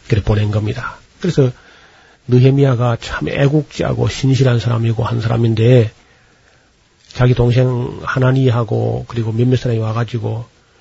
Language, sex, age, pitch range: Korean, male, 40-59, 115-135 Hz